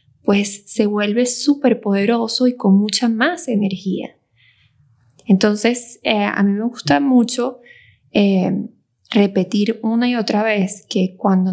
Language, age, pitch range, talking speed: Spanish, 20-39, 185-235 Hz, 130 wpm